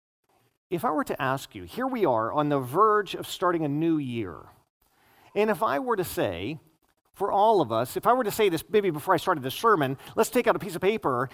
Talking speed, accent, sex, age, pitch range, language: 245 wpm, American, male, 40-59, 165-230 Hz, English